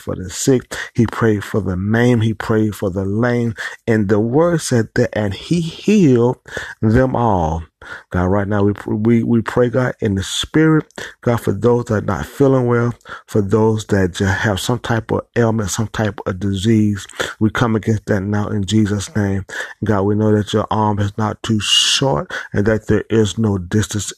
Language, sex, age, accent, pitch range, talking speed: English, male, 30-49, American, 105-120 Hz, 195 wpm